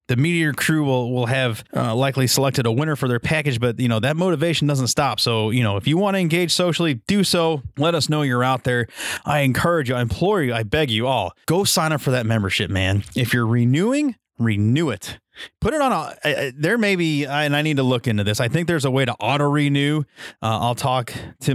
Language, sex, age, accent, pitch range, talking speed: English, male, 30-49, American, 110-140 Hz, 240 wpm